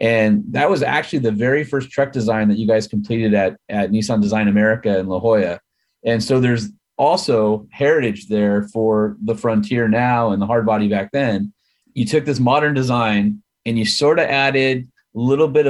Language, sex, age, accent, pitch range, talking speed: English, male, 30-49, American, 110-135 Hz, 190 wpm